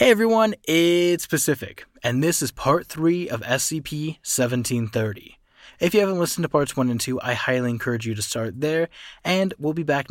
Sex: male